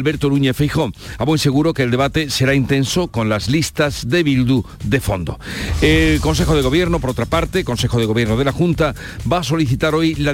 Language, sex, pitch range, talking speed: Spanish, male, 120-155 Hz, 210 wpm